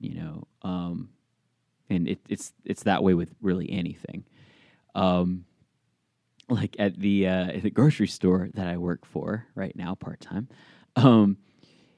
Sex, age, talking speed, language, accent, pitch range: male, 20-39, 135 wpm, English, American, 90-100 Hz